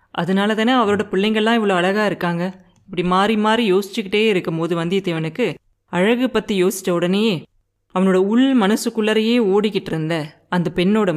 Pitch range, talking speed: 165-220 Hz, 135 wpm